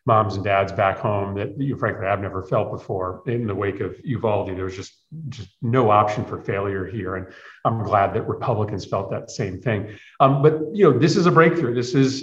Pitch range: 105-125 Hz